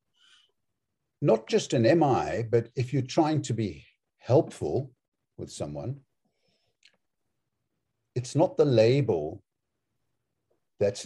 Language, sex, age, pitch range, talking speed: English, male, 60-79, 110-135 Hz, 100 wpm